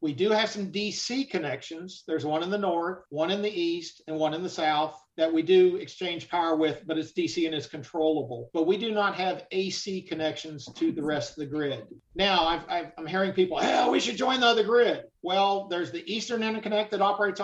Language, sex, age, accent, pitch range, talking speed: English, male, 50-69, American, 155-195 Hz, 215 wpm